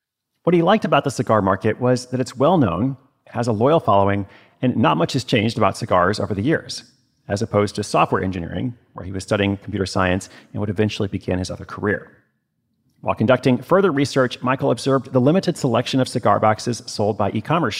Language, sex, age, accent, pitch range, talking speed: English, male, 40-59, American, 105-135 Hz, 195 wpm